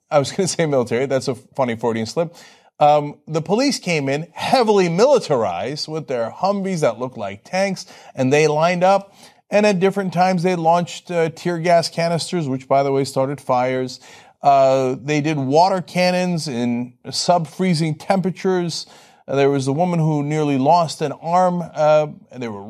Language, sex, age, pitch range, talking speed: English, male, 30-49, 135-195 Hz, 175 wpm